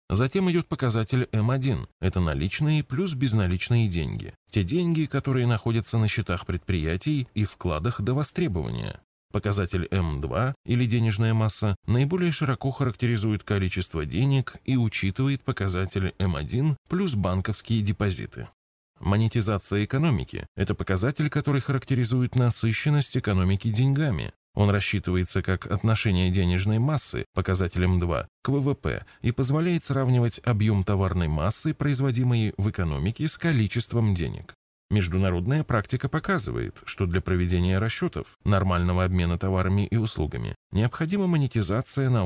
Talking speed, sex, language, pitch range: 120 wpm, male, Russian, 95-130 Hz